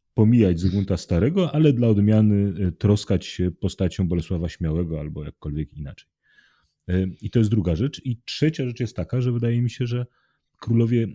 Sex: male